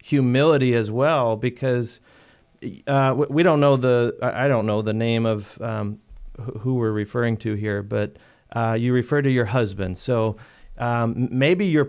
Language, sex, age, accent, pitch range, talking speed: English, male, 40-59, American, 115-140 Hz, 160 wpm